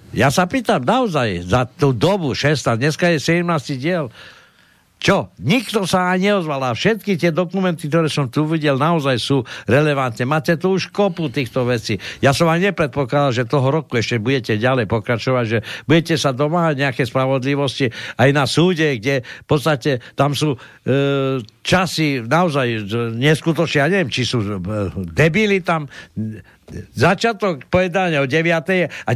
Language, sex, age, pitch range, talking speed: Slovak, male, 60-79, 125-170 Hz, 150 wpm